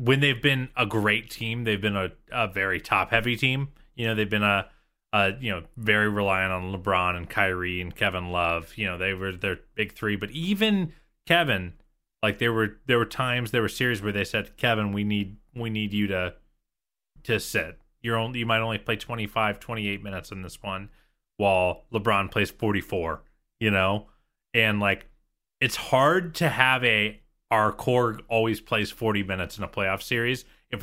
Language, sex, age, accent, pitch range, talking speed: English, male, 30-49, American, 100-125 Hz, 195 wpm